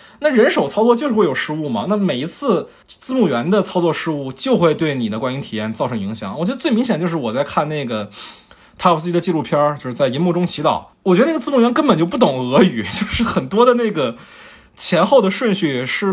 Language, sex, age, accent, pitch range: Chinese, male, 20-39, native, 120-200 Hz